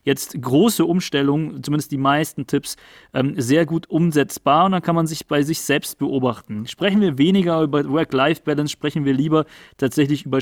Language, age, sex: German, 30-49, male